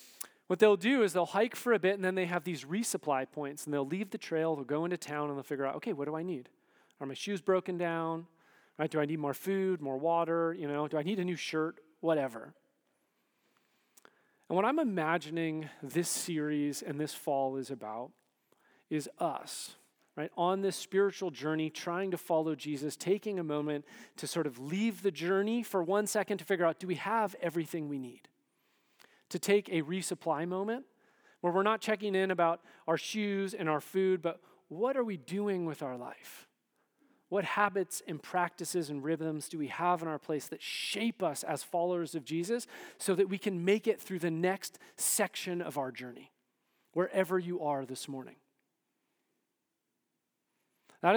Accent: American